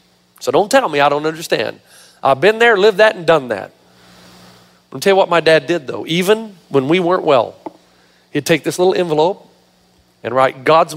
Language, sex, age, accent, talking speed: English, male, 40-59, American, 195 wpm